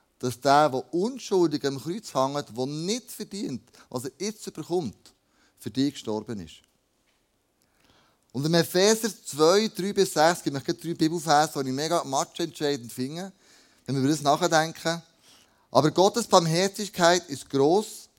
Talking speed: 135 wpm